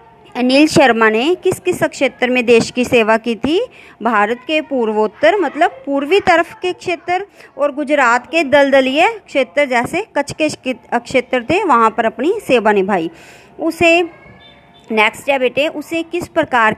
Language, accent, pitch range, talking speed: Hindi, native, 230-315 Hz, 150 wpm